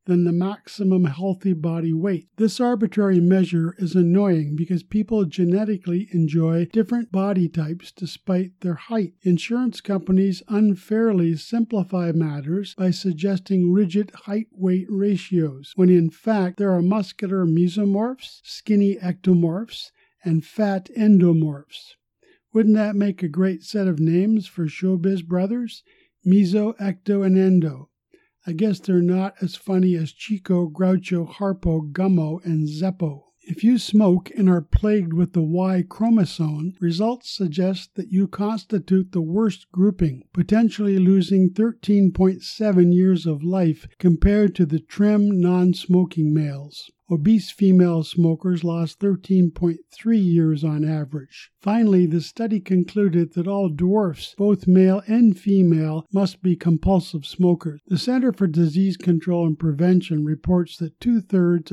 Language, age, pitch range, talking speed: English, 50-69, 170-200 Hz, 130 wpm